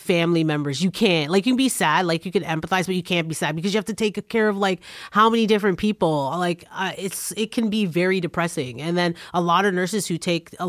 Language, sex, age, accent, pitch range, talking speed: English, female, 30-49, American, 155-195 Hz, 265 wpm